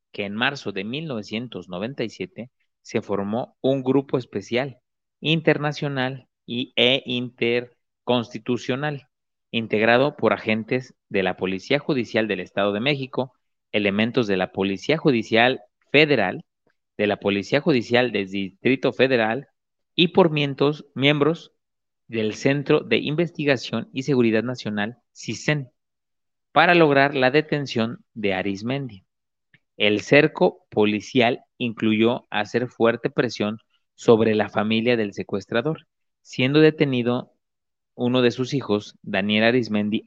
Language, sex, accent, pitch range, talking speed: Spanish, male, Mexican, 105-135 Hz, 110 wpm